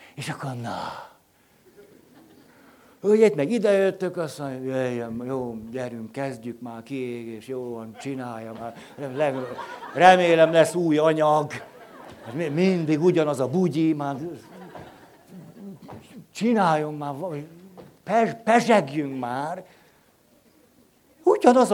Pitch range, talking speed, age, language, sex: 135-185 Hz, 90 wpm, 60-79, Hungarian, male